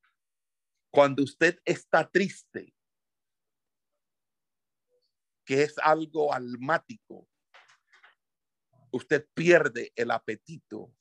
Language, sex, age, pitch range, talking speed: Spanish, male, 60-79, 130-200 Hz, 65 wpm